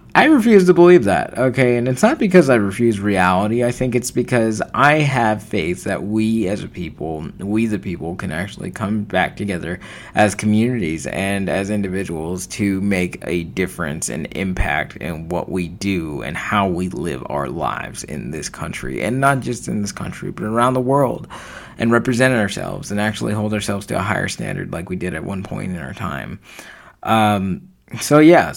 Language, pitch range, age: English, 90-120 Hz, 20-39